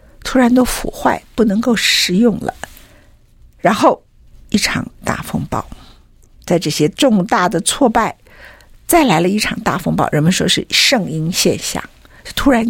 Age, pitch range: 50-69, 165-225 Hz